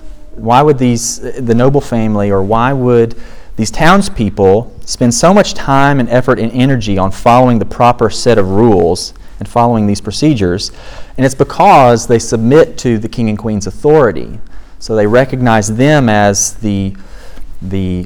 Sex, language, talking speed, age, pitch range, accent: male, English, 160 wpm, 40-59, 100-125 Hz, American